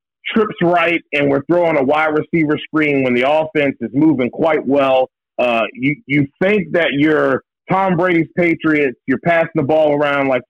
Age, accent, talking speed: 40-59, American, 175 wpm